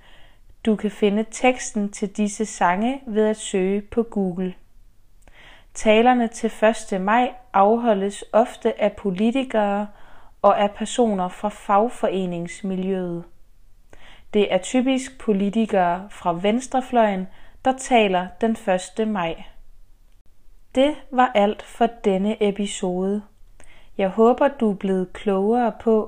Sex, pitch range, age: female, 185-225 Hz, 30-49